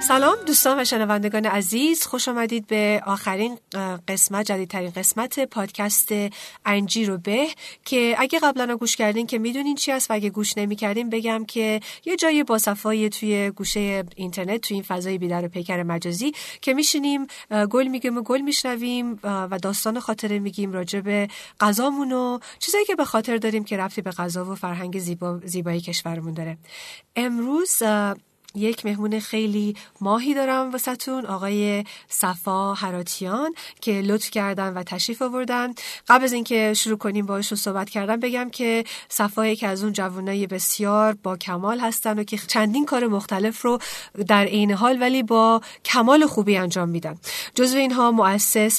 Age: 40-59